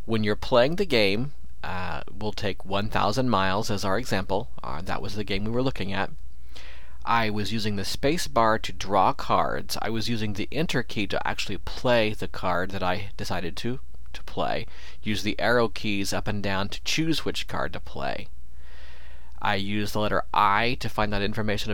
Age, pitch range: 40-59, 95-115 Hz